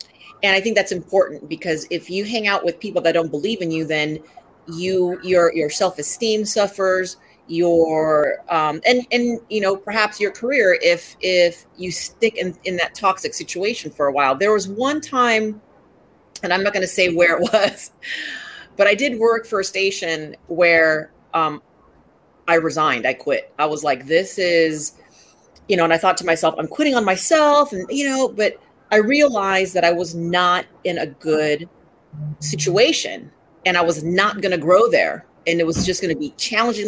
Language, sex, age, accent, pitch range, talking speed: English, female, 30-49, American, 160-215 Hz, 185 wpm